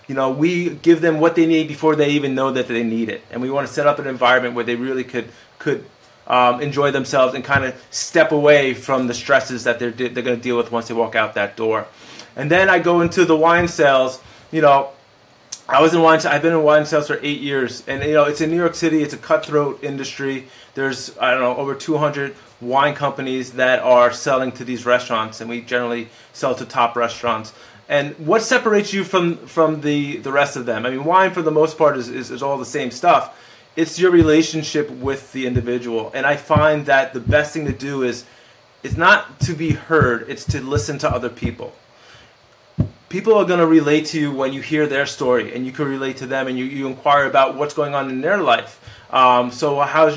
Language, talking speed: English, 230 wpm